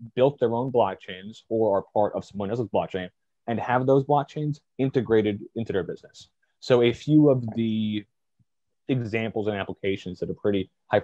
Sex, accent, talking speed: male, American, 170 wpm